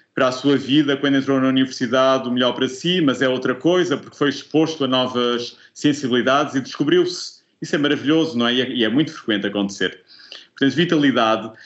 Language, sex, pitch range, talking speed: Portuguese, male, 115-145 Hz, 195 wpm